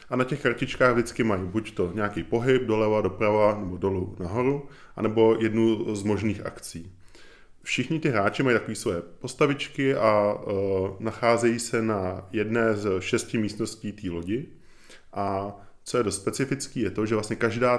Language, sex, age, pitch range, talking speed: Czech, male, 20-39, 100-115 Hz, 160 wpm